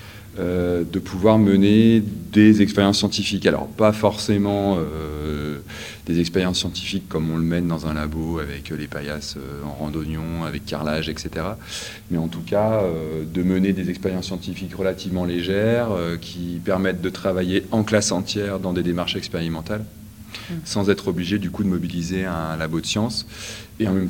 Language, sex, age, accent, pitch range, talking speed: French, male, 30-49, French, 85-100 Hz, 165 wpm